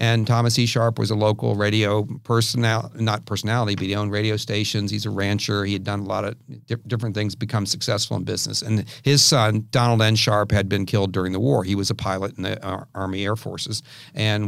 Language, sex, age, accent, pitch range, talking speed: English, male, 50-69, American, 100-125 Hz, 230 wpm